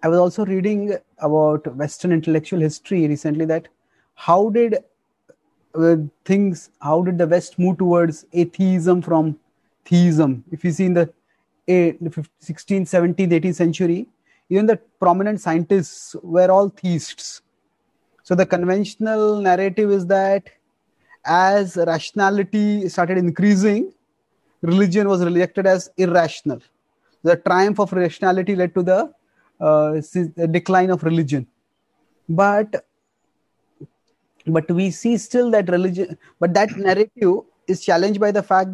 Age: 30-49